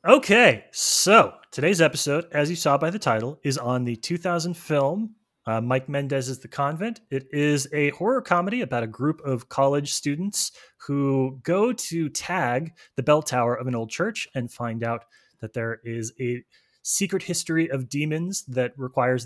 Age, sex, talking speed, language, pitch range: 20-39, male, 170 wpm, English, 125-175 Hz